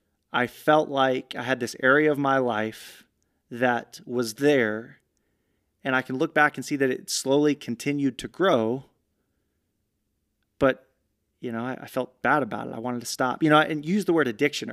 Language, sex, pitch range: English, male, 120-140 Hz